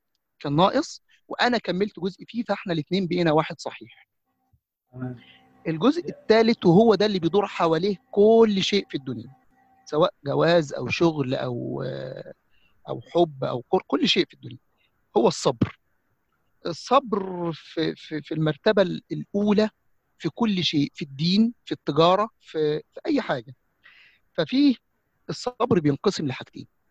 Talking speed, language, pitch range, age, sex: 125 wpm, English, 150-205 Hz, 50-69, male